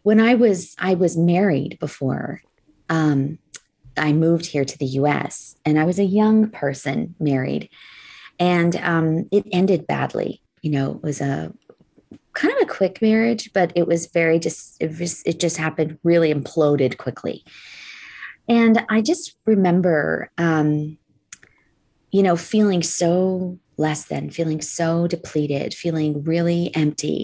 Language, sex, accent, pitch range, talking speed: English, female, American, 160-205 Hz, 145 wpm